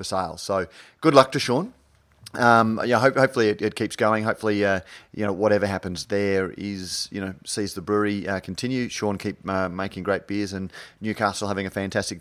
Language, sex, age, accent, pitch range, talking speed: English, male, 30-49, Australian, 95-105 Hz, 195 wpm